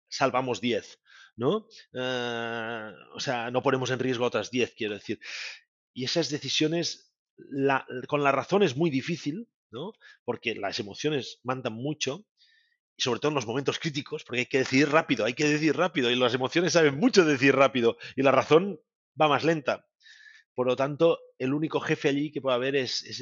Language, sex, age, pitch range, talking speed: Spanish, male, 30-49, 120-165 Hz, 185 wpm